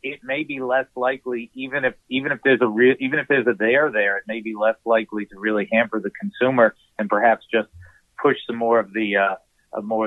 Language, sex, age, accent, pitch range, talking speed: English, male, 50-69, American, 115-150 Hz, 225 wpm